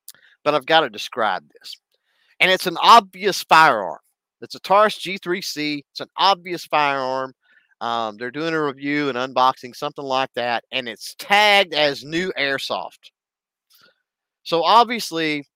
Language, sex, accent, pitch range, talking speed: English, male, American, 135-185 Hz, 145 wpm